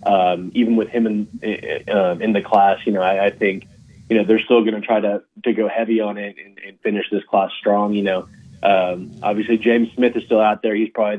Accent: American